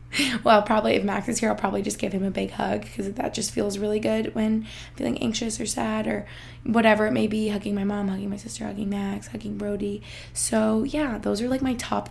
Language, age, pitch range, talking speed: English, 20-39, 200-260 Hz, 235 wpm